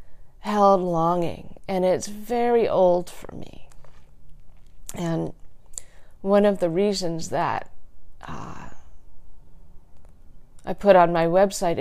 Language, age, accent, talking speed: English, 50-69, American, 100 wpm